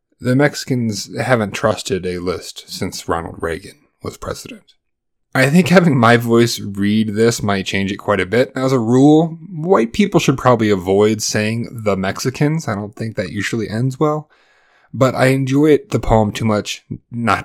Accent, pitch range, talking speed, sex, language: American, 100-130 Hz, 170 wpm, male, English